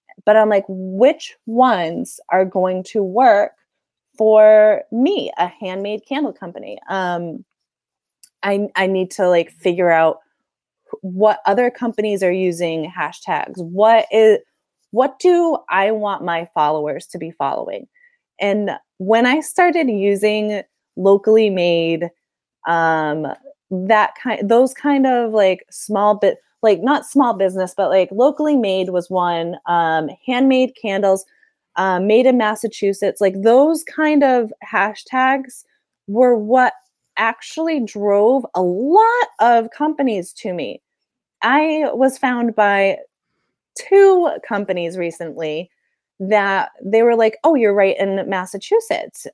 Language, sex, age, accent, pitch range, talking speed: English, female, 20-39, American, 185-260 Hz, 125 wpm